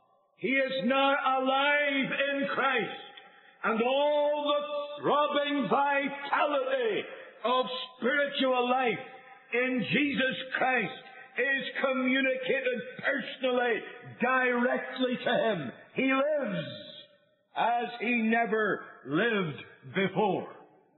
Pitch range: 245-285 Hz